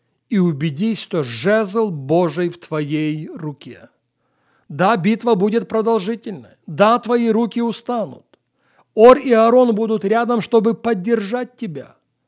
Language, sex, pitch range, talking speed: Russian, male, 165-230 Hz, 115 wpm